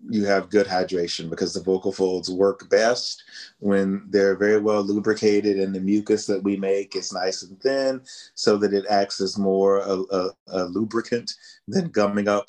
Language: English